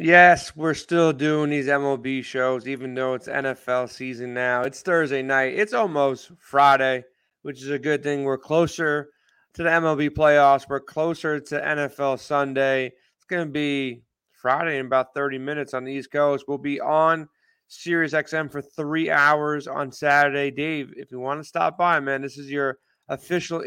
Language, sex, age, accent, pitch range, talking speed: English, male, 30-49, American, 135-155 Hz, 175 wpm